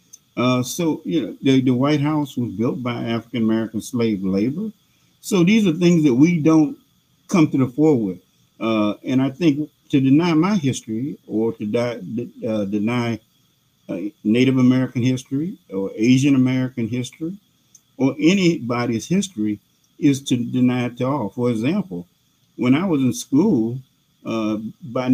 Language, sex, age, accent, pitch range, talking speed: English, male, 50-69, American, 110-150 Hz, 160 wpm